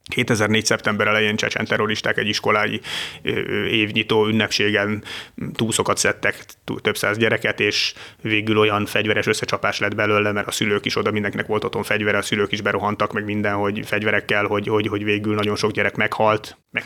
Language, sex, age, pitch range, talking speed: Hungarian, male, 30-49, 105-125 Hz, 165 wpm